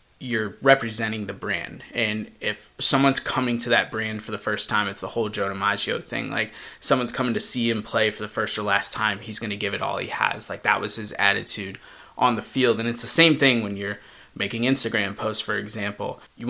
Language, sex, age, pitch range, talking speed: English, male, 20-39, 110-135 Hz, 230 wpm